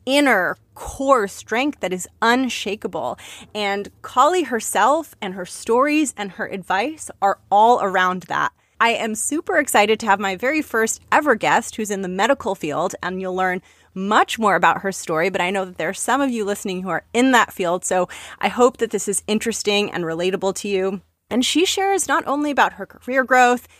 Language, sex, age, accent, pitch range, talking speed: English, female, 30-49, American, 195-255 Hz, 195 wpm